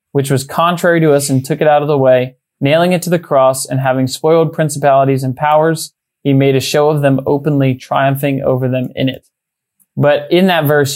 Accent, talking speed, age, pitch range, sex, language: American, 215 wpm, 20-39, 130-155 Hz, male, English